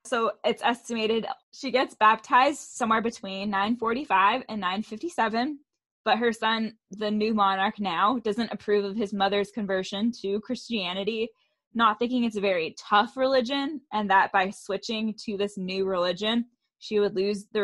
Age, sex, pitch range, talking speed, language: 10-29, female, 200-235 Hz, 155 wpm, English